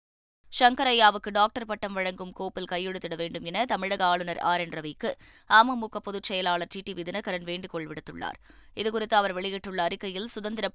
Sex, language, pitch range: female, Tamil, 175-205 Hz